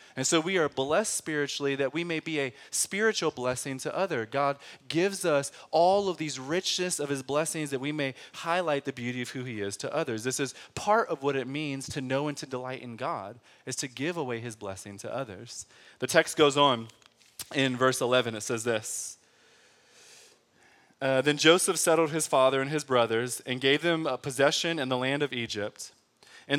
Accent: American